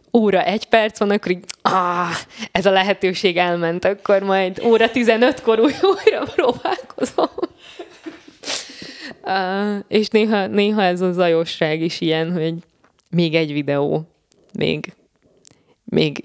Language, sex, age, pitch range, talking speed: Hungarian, female, 20-39, 160-225 Hz, 120 wpm